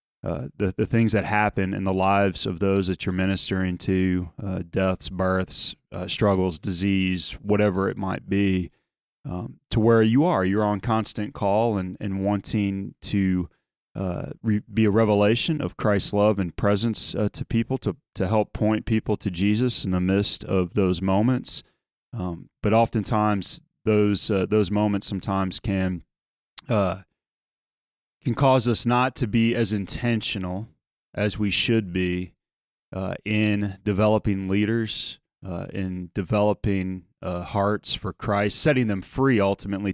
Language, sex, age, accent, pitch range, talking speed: English, male, 30-49, American, 95-110 Hz, 150 wpm